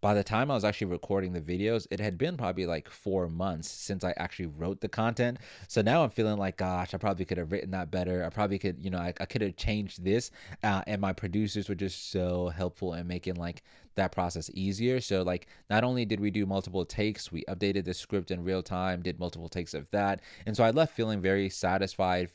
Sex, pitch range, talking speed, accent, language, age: male, 90-105 Hz, 235 wpm, American, English, 20-39